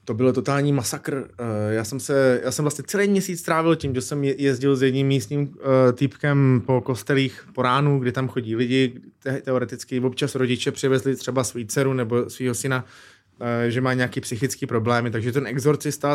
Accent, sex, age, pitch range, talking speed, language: native, male, 20-39, 120-135 Hz, 170 wpm, Czech